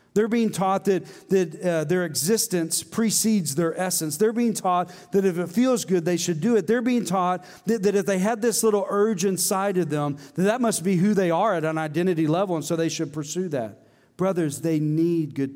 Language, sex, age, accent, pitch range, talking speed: English, male, 40-59, American, 150-195 Hz, 225 wpm